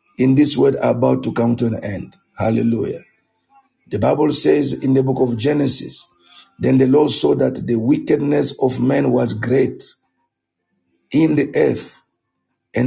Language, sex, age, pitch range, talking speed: English, male, 50-69, 120-145 Hz, 155 wpm